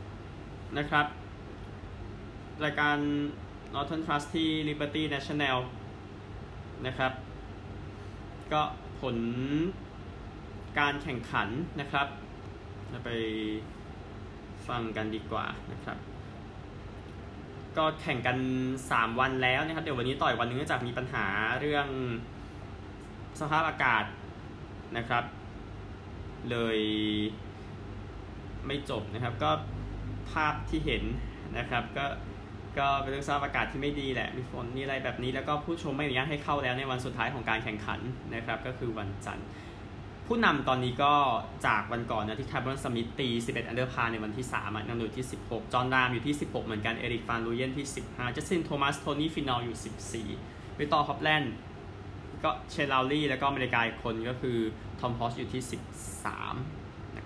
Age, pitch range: 20-39, 100-135 Hz